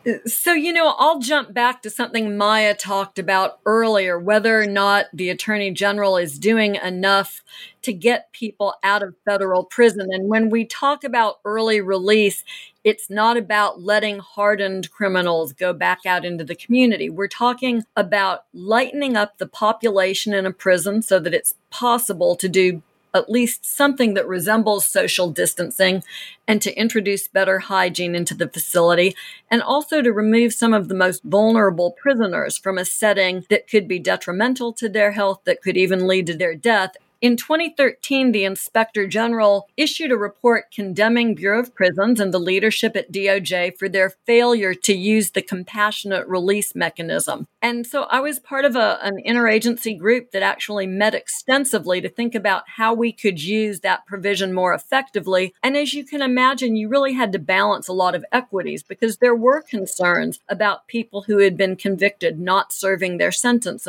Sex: female